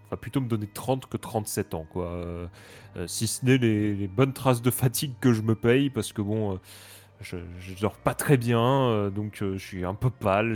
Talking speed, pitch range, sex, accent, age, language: 240 wpm, 95-115 Hz, male, French, 20-39, French